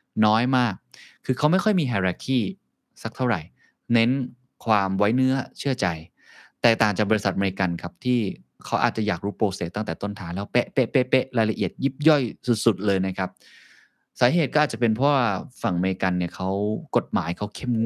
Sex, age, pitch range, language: male, 20-39, 95-120 Hz, Thai